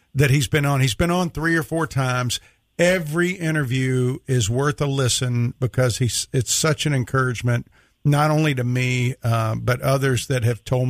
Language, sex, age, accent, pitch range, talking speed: English, male, 50-69, American, 125-150 Hz, 175 wpm